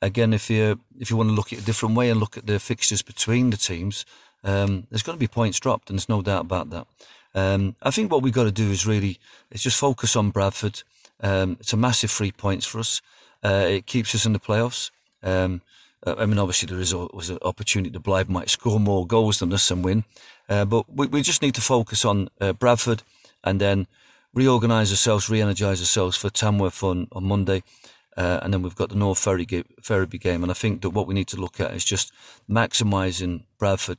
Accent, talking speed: British, 230 wpm